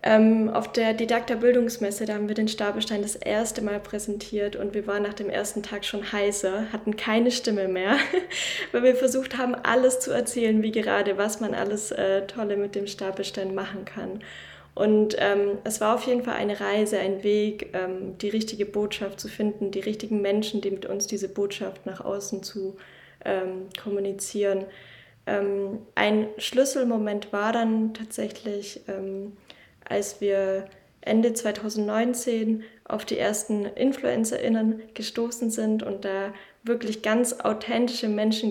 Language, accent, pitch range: German, German, 200-225 Hz